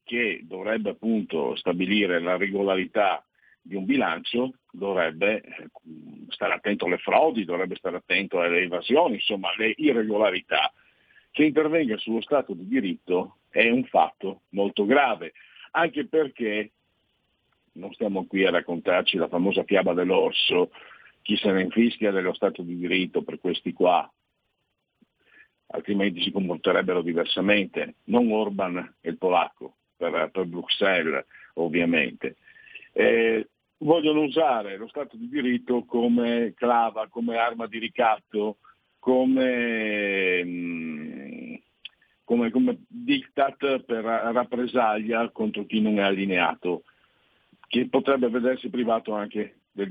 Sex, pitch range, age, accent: male, 105-135 Hz, 50-69, native